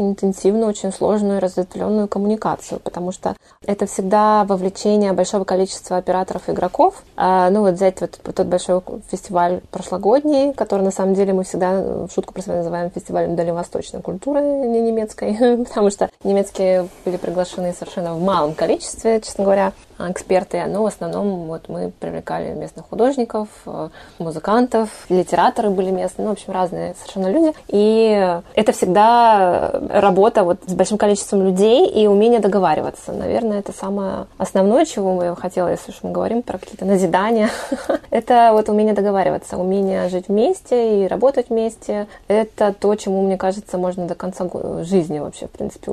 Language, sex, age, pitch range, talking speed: Russian, female, 20-39, 185-215 Hz, 155 wpm